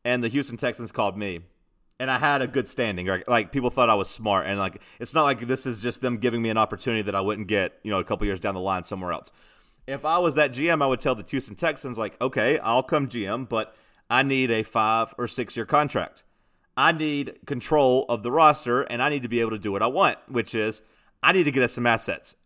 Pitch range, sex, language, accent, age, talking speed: 110-130 Hz, male, English, American, 30-49, 260 wpm